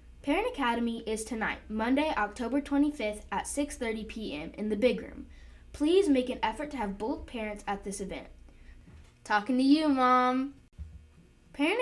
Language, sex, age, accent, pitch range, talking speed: English, female, 10-29, American, 205-275 Hz, 150 wpm